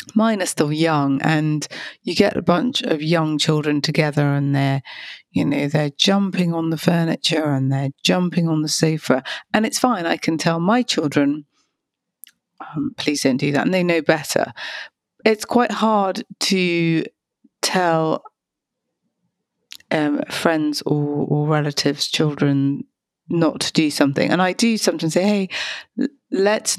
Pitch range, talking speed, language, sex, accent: 150-195 Hz, 150 wpm, English, female, British